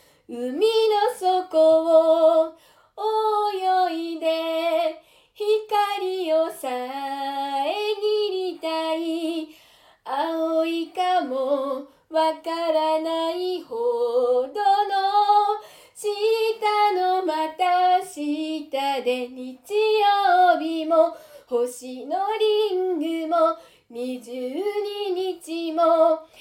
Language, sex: Japanese, female